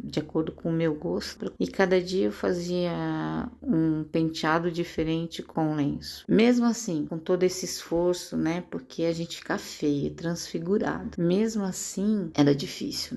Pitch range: 155-185 Hz